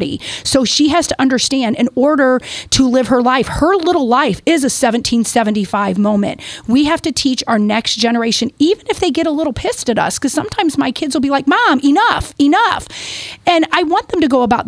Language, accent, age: English, American, 40-59